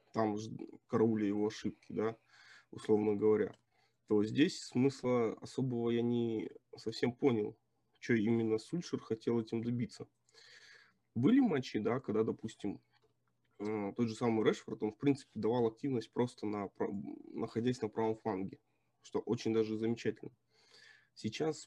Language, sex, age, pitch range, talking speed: Russian, male, 20-39, 110-125 Hz, 125 wpm